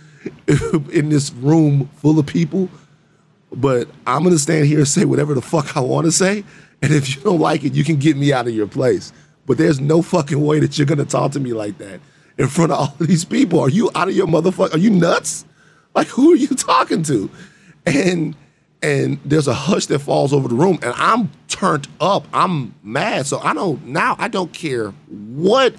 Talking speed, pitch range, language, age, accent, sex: 220 wpm, 125-165 Hz, English, 30-49, American, male